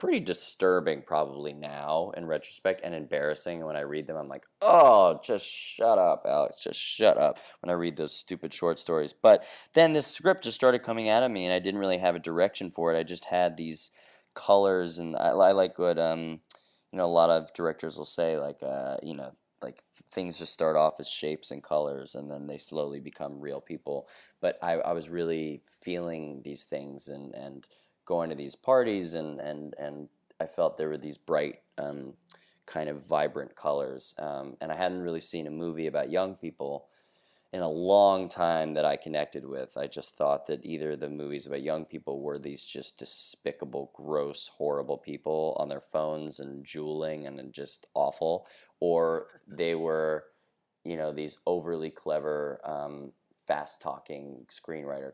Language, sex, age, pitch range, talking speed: English, male, 20-39, 75-85 Hz, 185 wpm